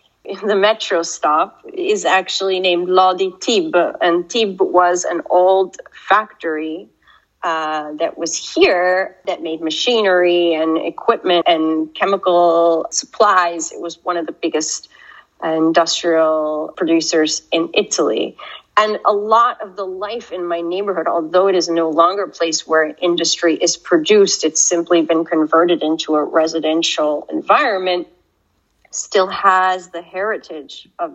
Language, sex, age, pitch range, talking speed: English, female, 30-49, 165-195 Hz, 135 wpm